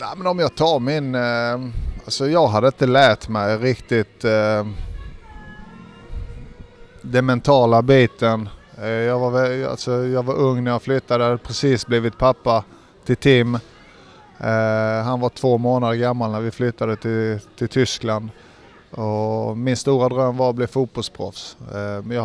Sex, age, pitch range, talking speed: male, 30-49, 110-125 Hz, 135 wpm